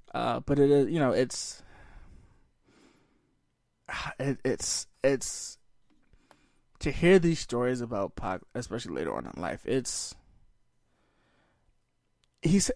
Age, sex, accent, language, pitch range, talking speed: 20-39, male, American, English, 125-160 Hz, 110 wpm